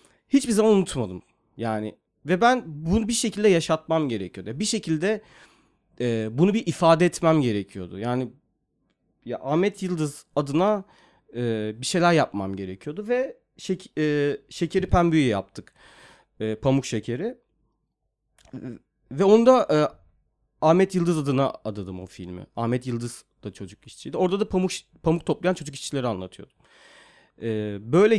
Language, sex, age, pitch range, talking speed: Turkish, male, 40-59, 115-175 Hz, 130 wpm